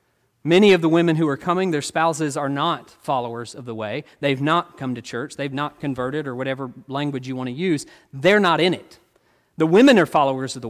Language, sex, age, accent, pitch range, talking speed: English, male, 40-59, American, 150-200 Hz, 225 wpm